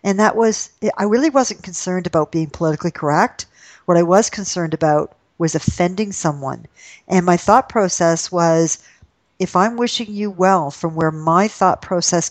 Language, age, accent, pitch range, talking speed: English, 50-69, American, 165-200 Hz, 165 wpm